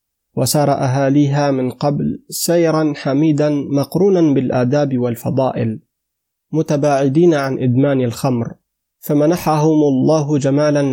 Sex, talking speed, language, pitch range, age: male, 90 wpm, Arabic, 135-155 Hz, 30-49